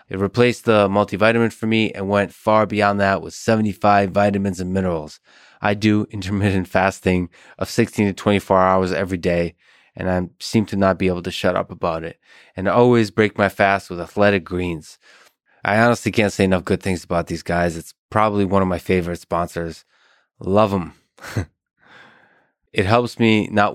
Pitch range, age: 95-105 Hz, 20-39